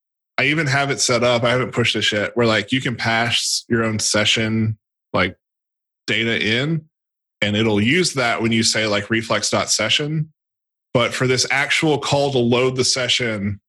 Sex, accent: male, American